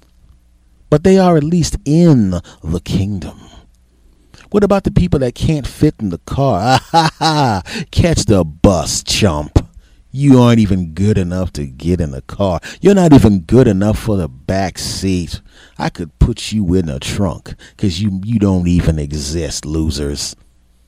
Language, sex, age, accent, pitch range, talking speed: English, male, 40-59, American, 85-140 Hz, 160 wpm